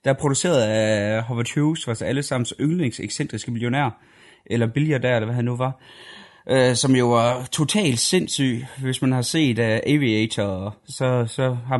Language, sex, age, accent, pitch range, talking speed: Danish, male, 30-49, native, 110-145 Hz, 175 wpm